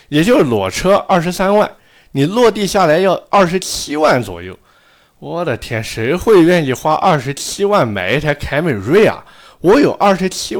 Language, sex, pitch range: Chinese, male, 105-160 Hz